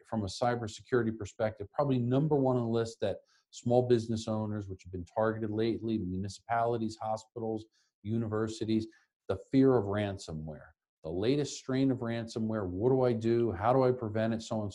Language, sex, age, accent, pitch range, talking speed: English, male, 50-69, American, 105-130 Hz, 175 wpm